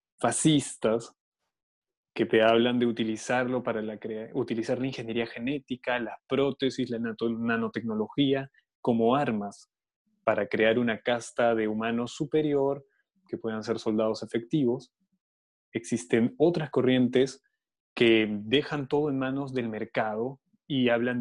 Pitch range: 115-145 Hz